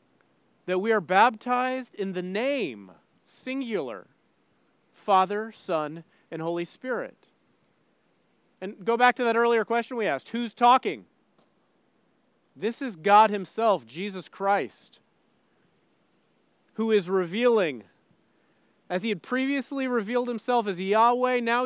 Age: 30-49